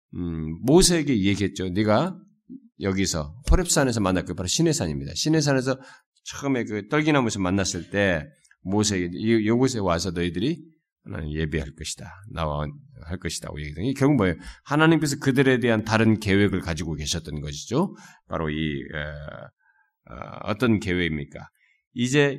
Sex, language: male, Korean